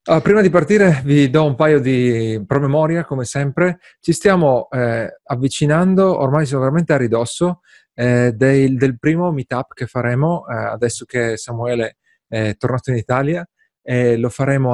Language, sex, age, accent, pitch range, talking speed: Italian, male, 30-49, native, 120-155 Hz, 150 wpm